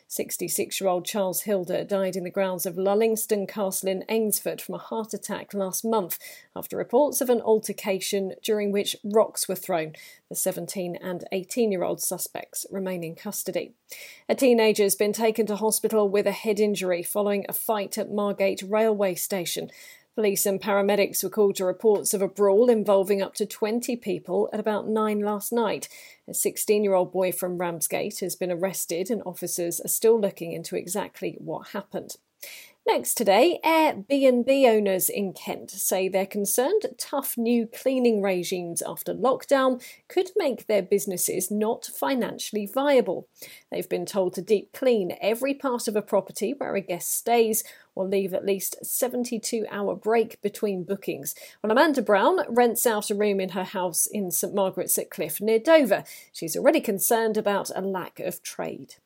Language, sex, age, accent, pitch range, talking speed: English, female, 40-59, British, 190-225 Hz, 165 wpm